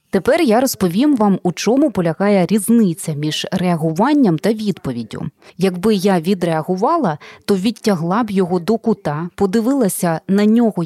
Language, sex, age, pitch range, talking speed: Ukrainian, female, 20-39, 170-215 Hz, 135 wpm